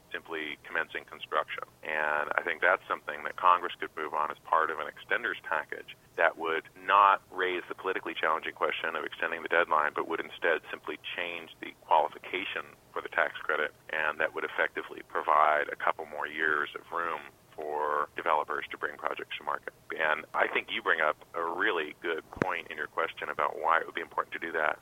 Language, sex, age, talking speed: English, male, 40-59, 200 wpm